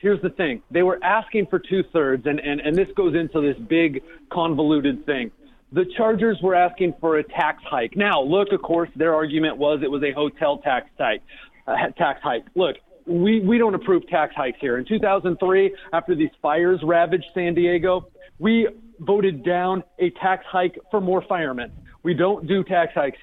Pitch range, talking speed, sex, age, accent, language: 175-210 Hz, 185 wpm, male, 40-59, American, English